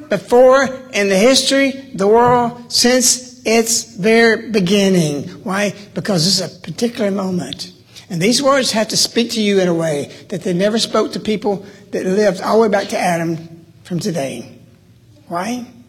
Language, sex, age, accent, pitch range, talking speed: English, male, 60-79, American, 165-215 Hz, 170 wpm